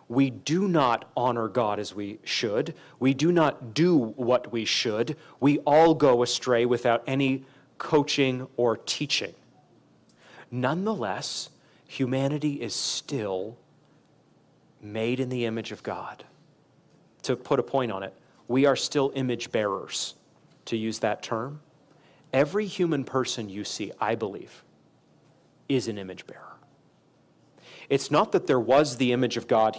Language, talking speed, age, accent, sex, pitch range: English, 140 wpm, 30-49, American, male, 115-145 Hz